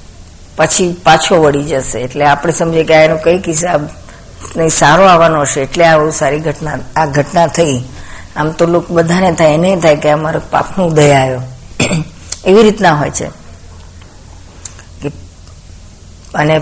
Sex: female